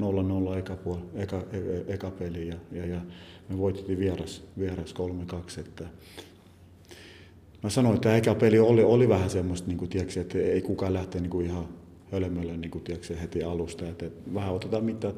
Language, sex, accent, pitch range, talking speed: Finnish, male, native, 90-100 Hz, 140 wpm